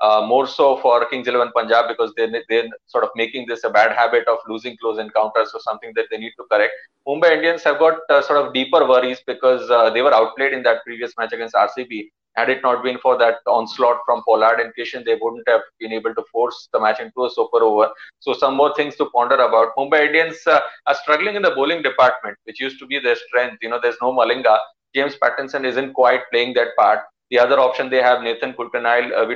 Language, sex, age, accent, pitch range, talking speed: English, male, 20-39, Indian, 120-145 Hz, 235 wpm